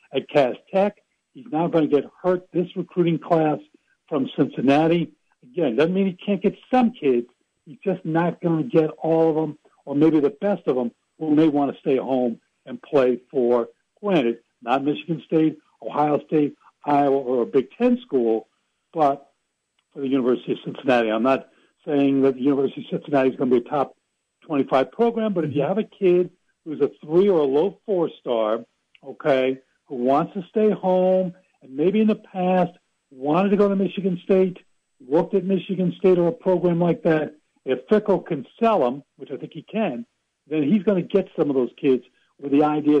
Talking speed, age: 195 wpm, 60-79